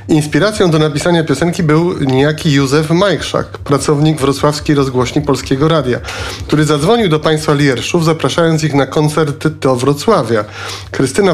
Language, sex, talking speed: Polish, male, 130 wpm